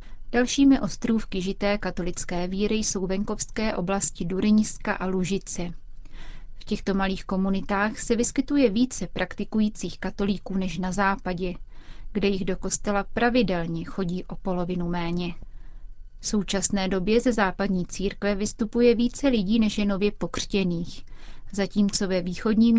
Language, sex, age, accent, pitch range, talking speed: Czech, female, 30-49, native, 185-215 Hz, 125 wpm